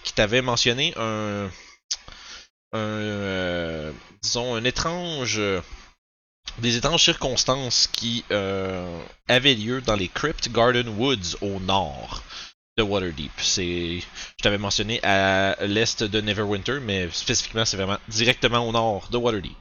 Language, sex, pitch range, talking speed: French, male, 95-125 Hz, 130 wpm